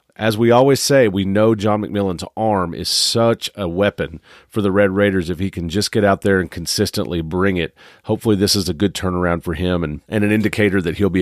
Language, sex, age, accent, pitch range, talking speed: English, male, 40-59, American, 95-110 Hz, 230 wpm